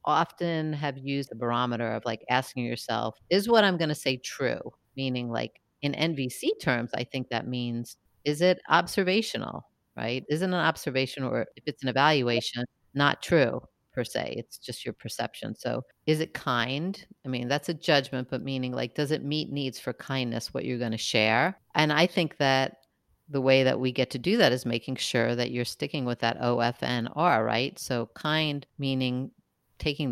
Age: 50-69